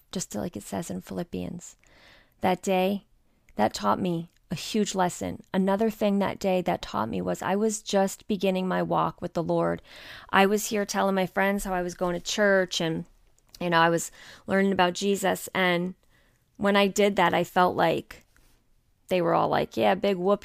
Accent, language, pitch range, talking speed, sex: American, English, 175-200 Hz, 195 wpm, female